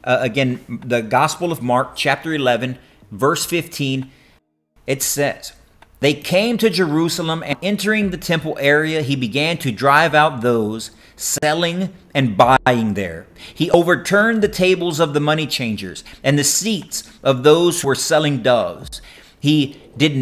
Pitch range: 125-170 Hz